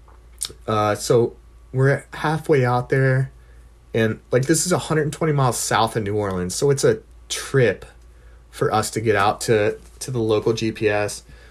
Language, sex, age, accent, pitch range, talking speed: English, male, 30-49, American, 80-125 Hz, 155 wpm